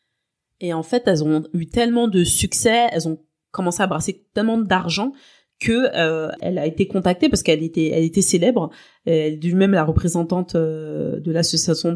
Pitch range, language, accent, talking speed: 155-195 Hz, French, French, 175 wpm